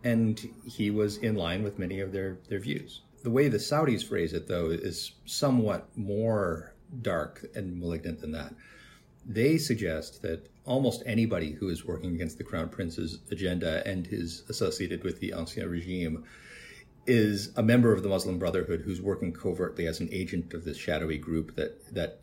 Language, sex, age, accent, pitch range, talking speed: English, male, 40-59, American, 80-105 Hz, 175 wpm